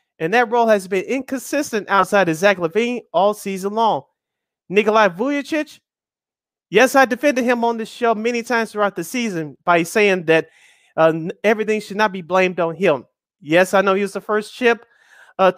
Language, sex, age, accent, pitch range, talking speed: English, male, 30-49, American, 175-240 Hz, 180 wpm